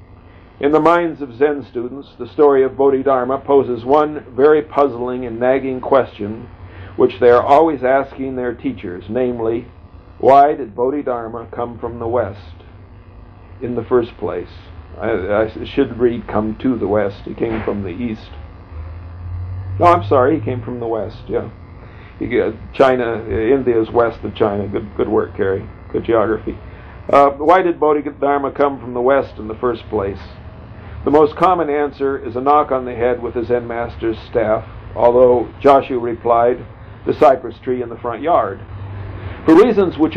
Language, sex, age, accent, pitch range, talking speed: English, male, 50-69, American, 105-140 Hz, 165 wpm